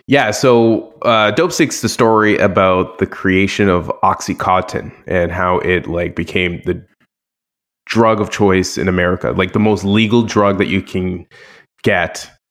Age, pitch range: 20-39, 95-115 Hz